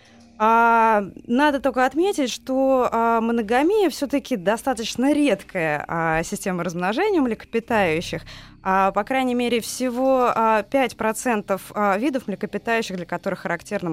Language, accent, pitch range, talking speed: Russian, native, 175-230 Hz, 95 wpm